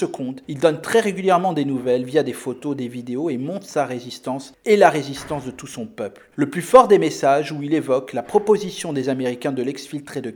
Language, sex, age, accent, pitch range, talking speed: French, male, 40-59, French, 135-190 Hz, 215 wpm